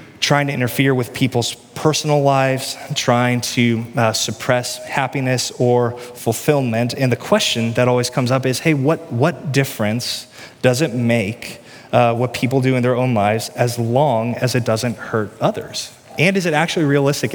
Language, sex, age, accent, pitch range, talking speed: English, male, 20-39, American, 120-145 Hz, 170 wpm